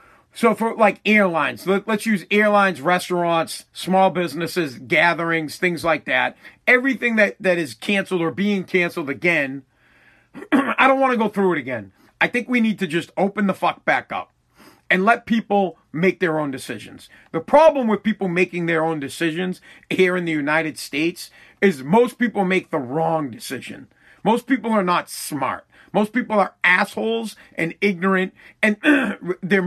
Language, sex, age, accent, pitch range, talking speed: English, male, 40-59, American, 170-225 Hz, 170 wpm